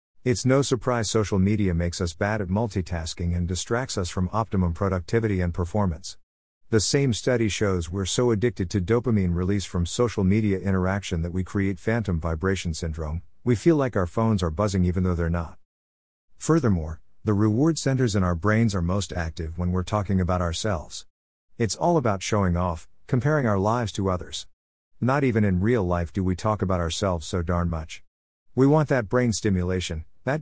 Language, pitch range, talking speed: English, 85-115 Hz, 185 wpm